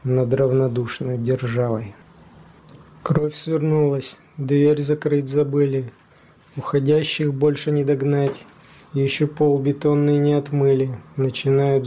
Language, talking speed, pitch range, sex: Russian, 90 wpm, 135-150 Hz, male